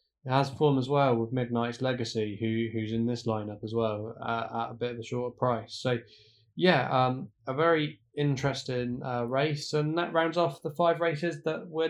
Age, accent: 10-29, British